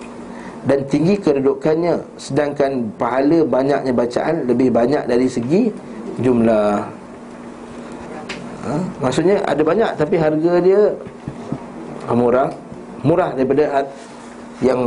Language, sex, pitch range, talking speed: Malay, male, 125-175 Hz, 95 wpm